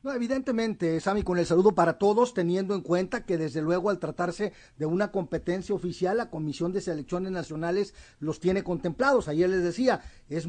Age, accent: 40-59, Mexican